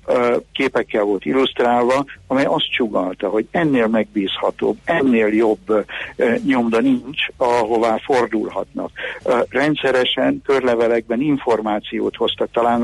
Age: 60-79